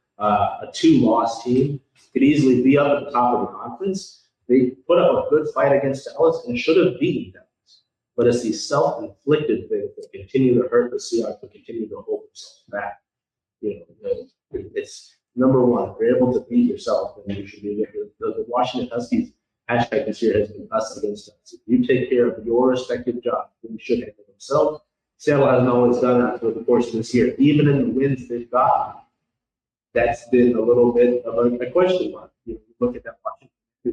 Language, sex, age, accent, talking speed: English, male, 30-49, American, 210 wpm